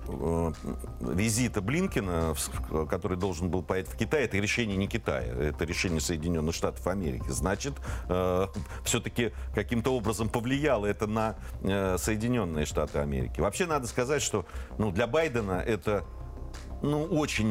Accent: native